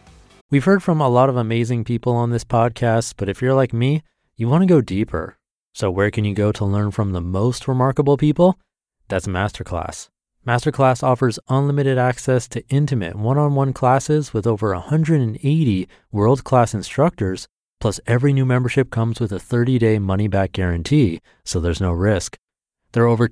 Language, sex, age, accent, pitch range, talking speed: English, male, 30-49, American, 100-130 Hz, 165 wpm